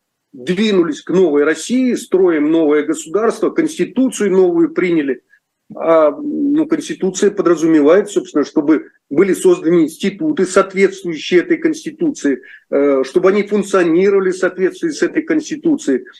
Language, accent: Russian, native